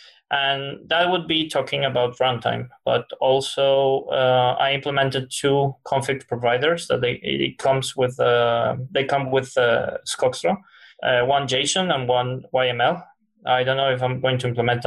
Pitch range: 125-140 Hz